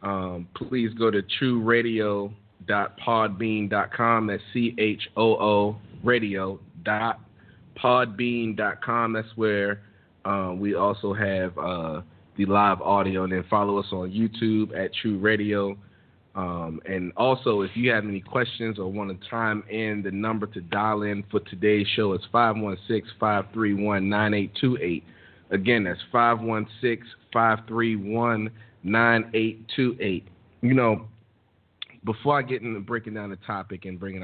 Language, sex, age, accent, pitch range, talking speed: English, male, 30-49, American, 95-110 Hz, 120 wpm